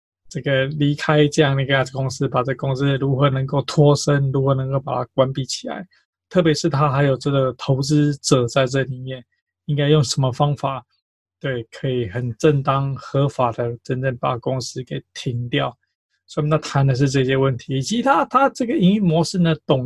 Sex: male